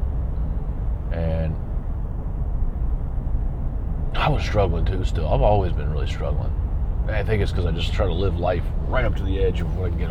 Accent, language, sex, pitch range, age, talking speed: American, English, male, 80-100 Hz, 30-49, 190 wpm